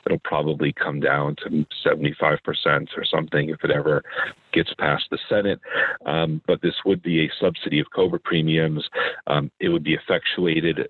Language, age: English, 40-59